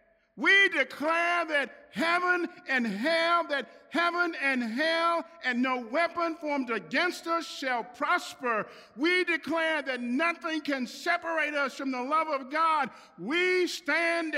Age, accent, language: 50-69, American, English